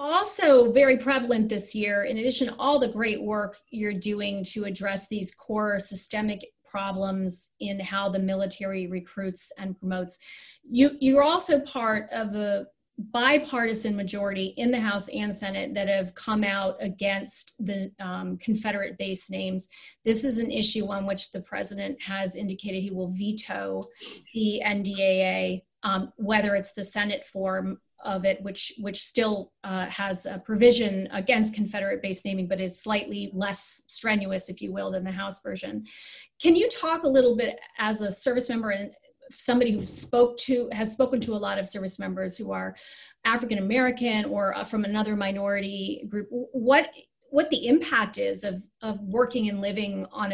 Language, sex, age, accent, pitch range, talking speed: English, female, 30-49, American, 195-240 Hz, 165 wpm